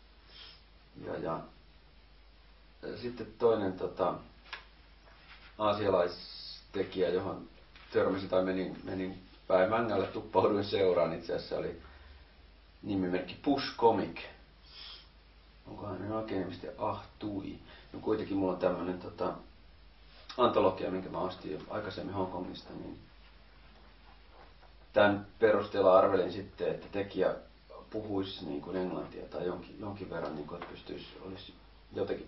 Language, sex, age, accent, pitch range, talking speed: Finnish, male, 40-59, native, 75-95 Hz, 105 wpm